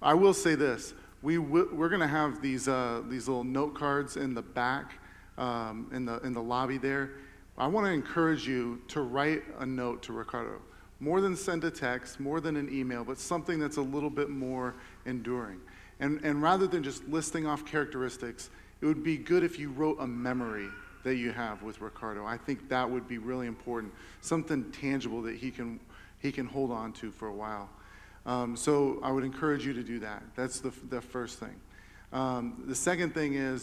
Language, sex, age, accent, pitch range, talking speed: English, male, 40-59, American, 120-145 Hz, 205 wpm